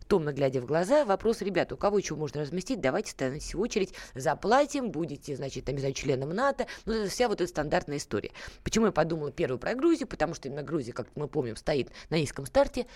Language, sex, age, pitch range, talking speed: Russian, female, 20-39, 155-215 Hz, 200 wpm